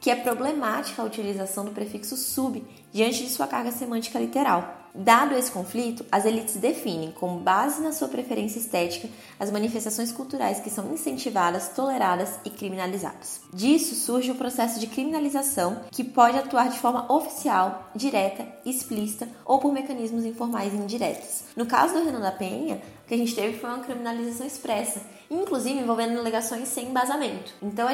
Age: 20-39